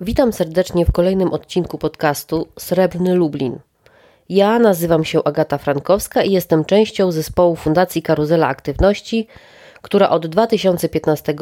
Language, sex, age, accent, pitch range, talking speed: Polish, female, 30-49, native, 155-190 Hz, 120 wpm